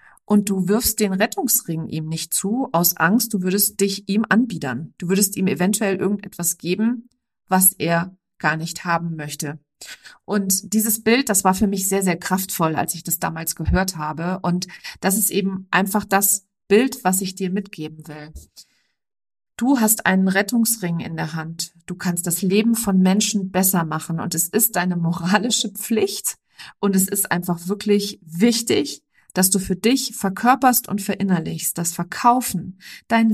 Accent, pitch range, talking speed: German, 170-210 Hz, 165 wpm